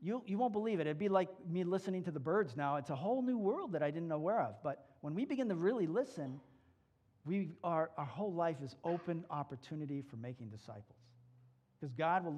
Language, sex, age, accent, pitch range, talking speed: English, male, 50-69, American, 120-165 Hz, 220 wpm